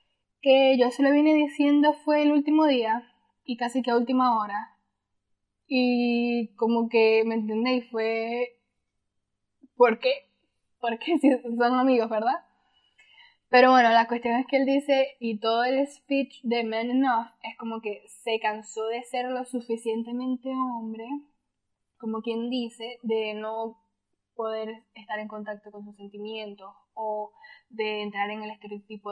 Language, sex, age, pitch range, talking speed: Spanish, female, 10-29, 215-270 Hz, 150 wpm